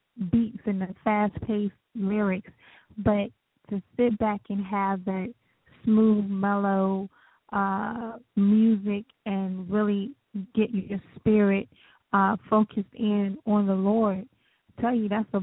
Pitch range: 195-220 Hz